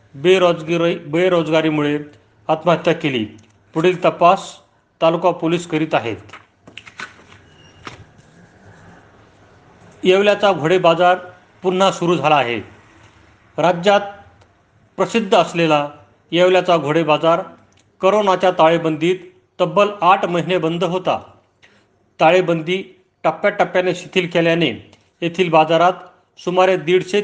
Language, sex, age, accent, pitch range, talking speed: Marathi, male, 40-59, native, 150-180 Hz, 80 wpm